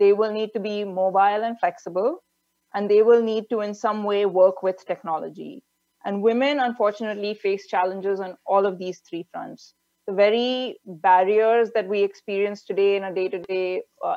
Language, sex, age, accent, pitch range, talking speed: English, female, 30-49, Indian, 185-215 Hz, 170 wpm